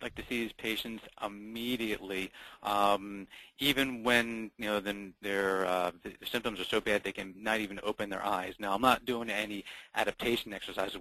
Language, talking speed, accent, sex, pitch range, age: English, 180 wpm, American, male, 95-110 Hz, 30-49